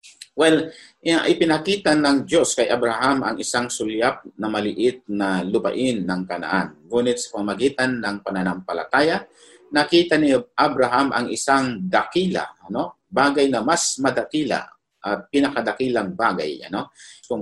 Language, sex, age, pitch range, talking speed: Filipino, male, 50-69, 100-145 Hz, 125 wpm